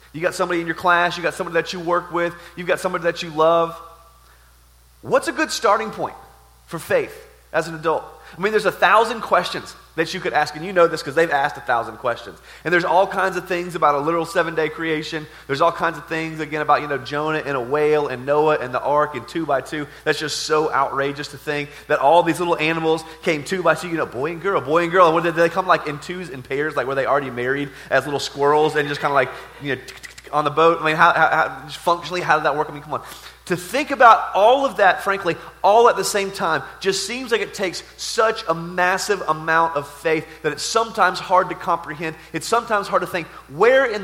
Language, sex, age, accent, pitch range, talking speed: English, male, 30-49, American, 150-180 Hz, 250 wpm